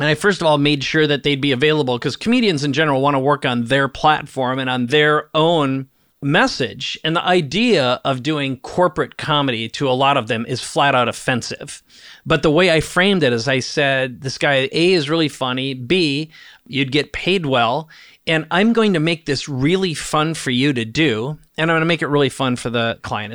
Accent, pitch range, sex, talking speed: American, 135-165 Hz, male, 215 wpm